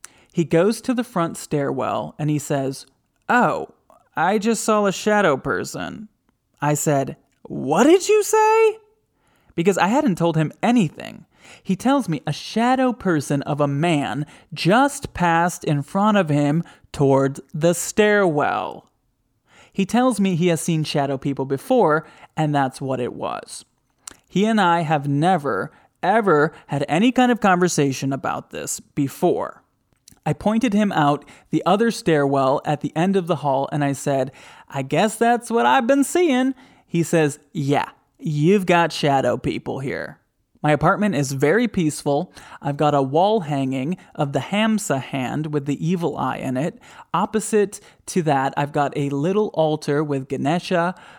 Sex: male